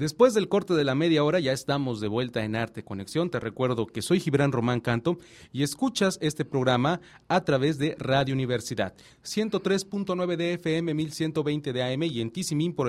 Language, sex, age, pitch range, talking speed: English, male, 40-59, 125-170 Hz, 185 wpm